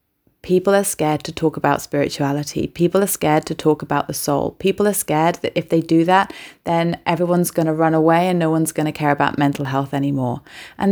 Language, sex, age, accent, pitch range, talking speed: English, female, 30-49, British, 150-175 Hz, 210 wpm